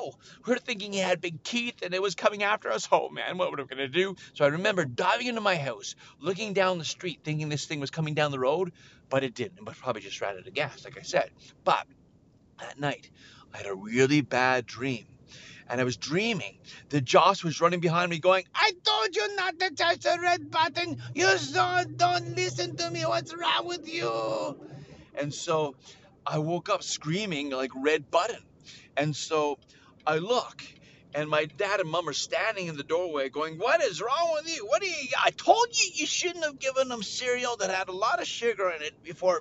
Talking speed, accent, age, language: 215 wpm, American, 30-49, English